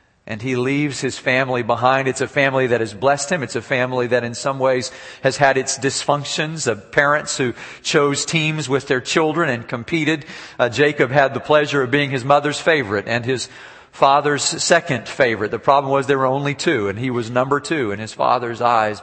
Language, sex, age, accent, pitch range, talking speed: English, male, 50-69, American, 110-135 Hz, 205 wpm